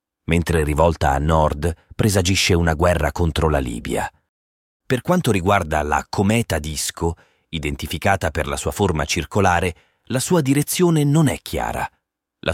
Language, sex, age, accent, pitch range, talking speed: Italian, male, 30-49, native, 80-110 Hz, 140 wpm